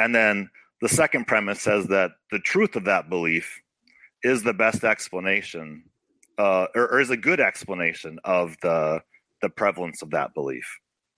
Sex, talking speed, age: male, 160 wpm, 40-59